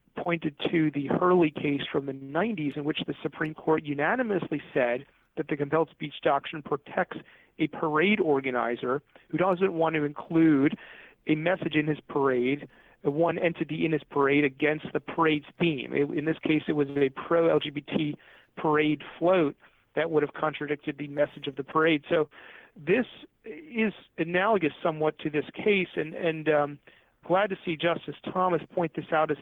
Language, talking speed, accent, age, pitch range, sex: English, 165 wpm, American, 40-59, 150-170 Hz, male